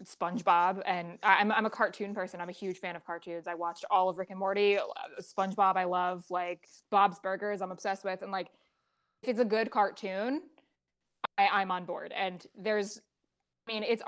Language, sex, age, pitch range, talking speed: English, female, 20-39, 180-210 Hz, 190 wpm